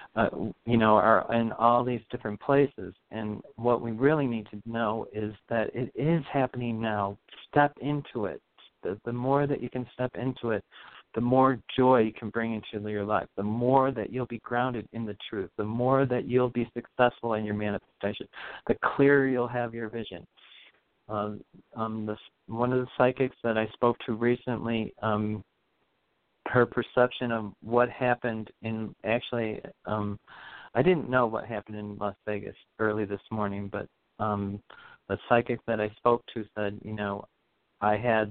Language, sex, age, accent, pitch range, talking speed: English, male, 50-69, American, 105-120 Hz, 175 wpm